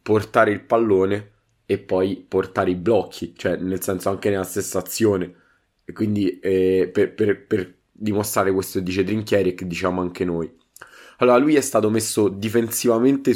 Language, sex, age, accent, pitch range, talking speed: Italian, male, 20-39, native, 95-105 Hz, 155 wpm